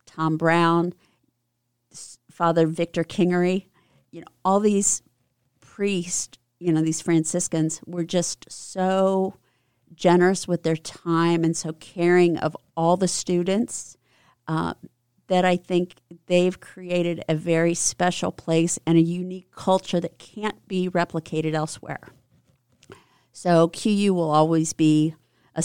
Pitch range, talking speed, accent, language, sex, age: 155-180 Hz, 125 wpm, American, English, female, 50-69